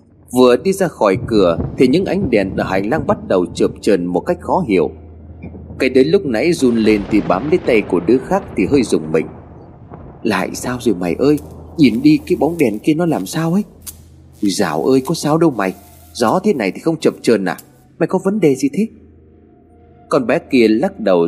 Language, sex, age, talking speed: Vietnamese, male, 30-49, 215 wpm